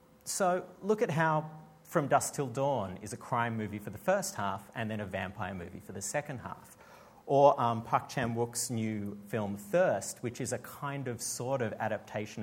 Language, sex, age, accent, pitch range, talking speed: English, male, 40-59, Australian, 105-150 Hz, 195 wpm